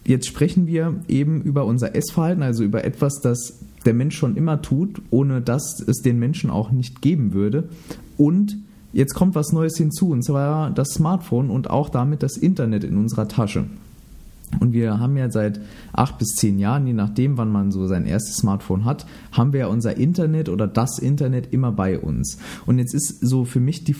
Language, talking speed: German, 195 wpm